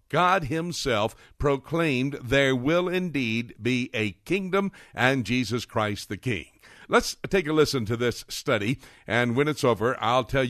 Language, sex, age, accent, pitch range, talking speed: English, male, 60-79, American, 120-165 Hz, 155 wpm